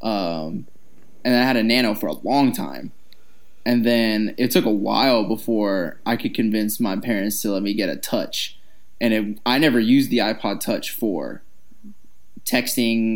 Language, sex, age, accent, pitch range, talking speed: English, male, 20-39, American, 105-140 Hz, 175 wpm